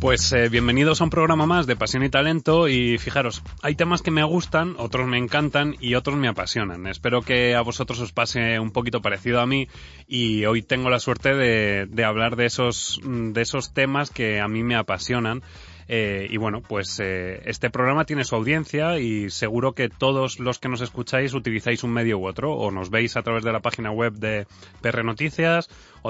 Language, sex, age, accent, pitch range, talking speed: Spanish, male, 30-49, Spanish, 105-135 Hz, 205 wpm